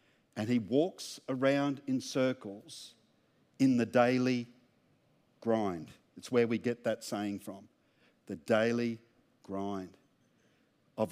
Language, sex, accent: English, male, Australian